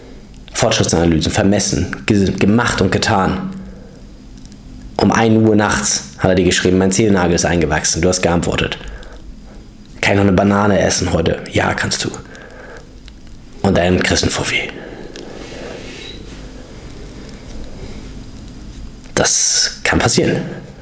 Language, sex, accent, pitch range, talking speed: German, male, German, 90-120 Hz, 105 wpm